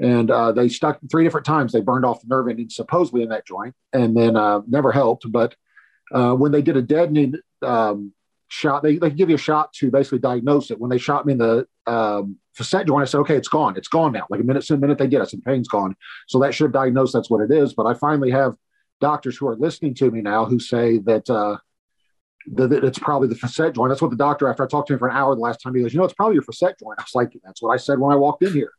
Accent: American